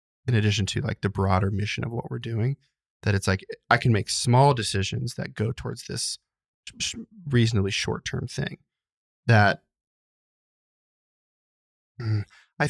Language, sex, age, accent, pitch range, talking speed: English, male, 20-39, American, 100-120 Hz, 135 wpm